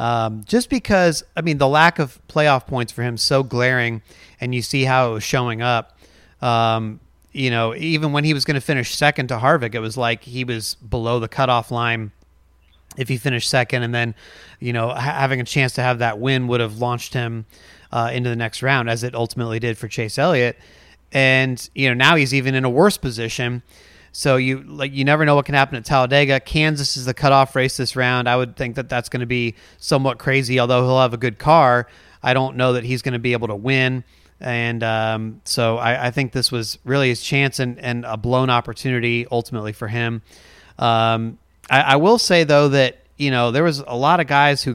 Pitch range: 115-135 Hz